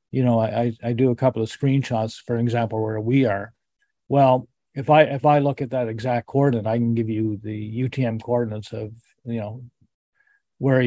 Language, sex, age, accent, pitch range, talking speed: English, male, 40-59, American, 110-130 Hz, 195 wpm